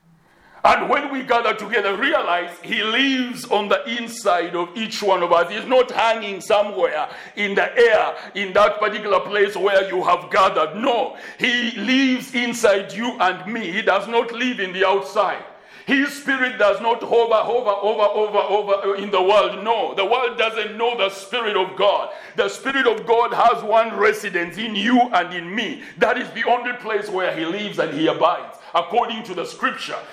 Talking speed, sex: 185 wpm, male